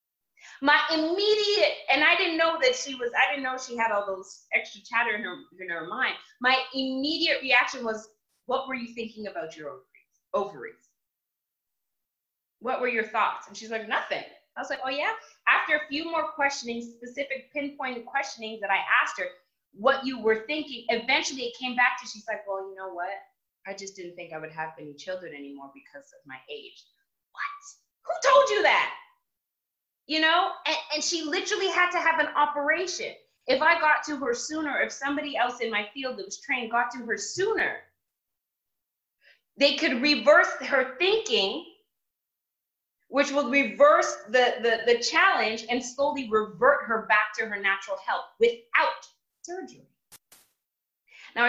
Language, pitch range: English, 215-310 Hz